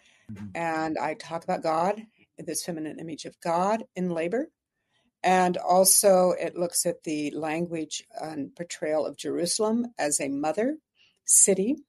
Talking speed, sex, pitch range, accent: 135 wpm, female, 155-185 Hz, American